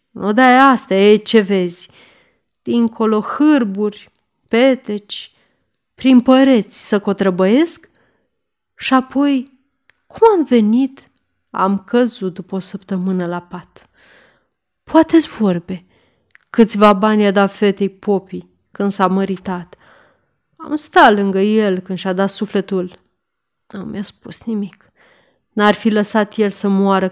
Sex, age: female, 30-49